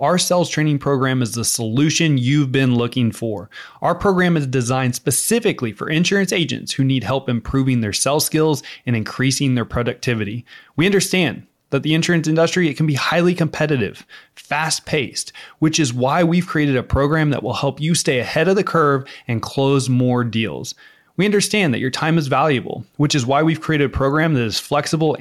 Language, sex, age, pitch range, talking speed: English, male, 20-39, 125-165 Hz, 190 wpm